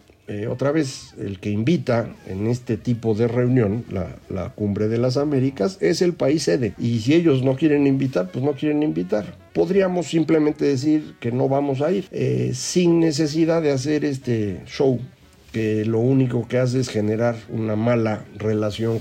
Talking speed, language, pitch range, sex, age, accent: 175 wpm, Spanish, 110-145 Hz, male, 50-69, Mexican